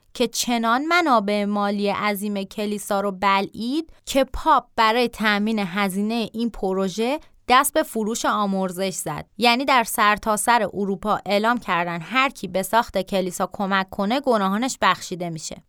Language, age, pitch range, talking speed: Persian, 20-39, 195-245 Hz, 140 wpm